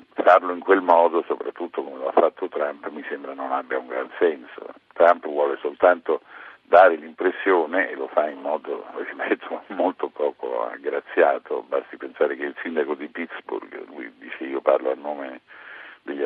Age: 50-69